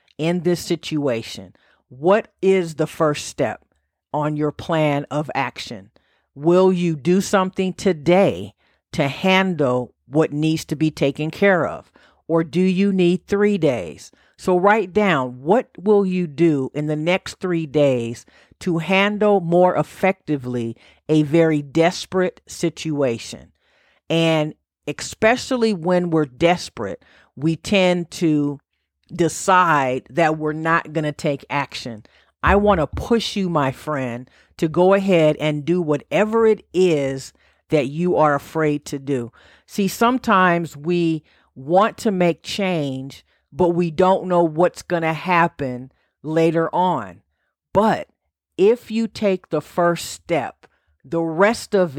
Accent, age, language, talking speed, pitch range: American, 50-69, English, 135 wpm, 145-185 Hz